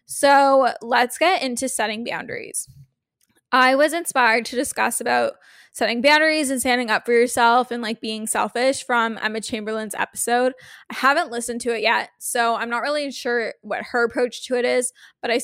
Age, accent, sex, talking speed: 10-29, American, female, 180 wpm